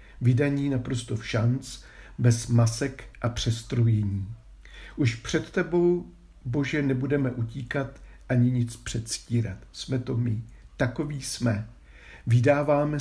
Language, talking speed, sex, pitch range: Czech, 105 wpm, male, 115-140 Hz